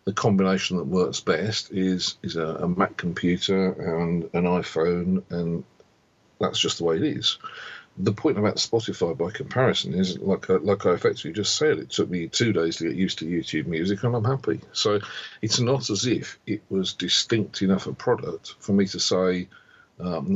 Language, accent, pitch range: English, British, 90-110 Hz